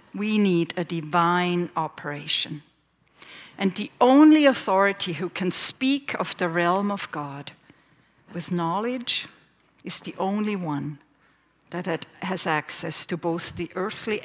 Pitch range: 160-220 Hz